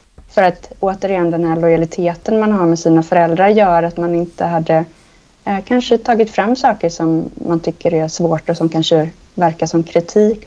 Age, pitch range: 20-39, 165-210 Hz